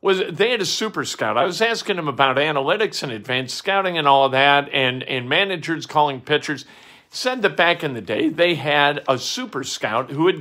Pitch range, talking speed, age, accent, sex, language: 145-205 Hz, 215 wpm, 50-69, American, male, English